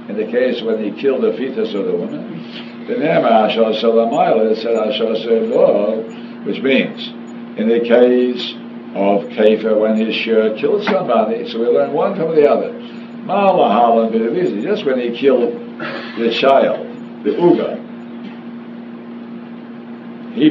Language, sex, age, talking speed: English, male, 60-79, 135 wpm